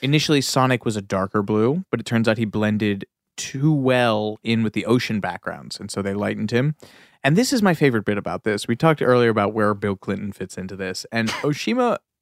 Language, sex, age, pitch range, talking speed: English, male, 20-39, 110-145 Hz, 215 wpm